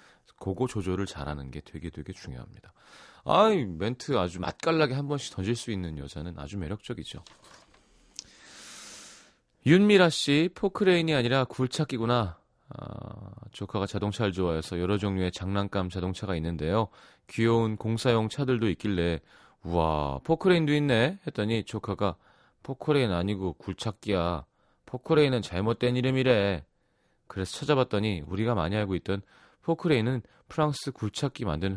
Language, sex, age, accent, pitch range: Korean, male, 30-49, native, 95-130 Hz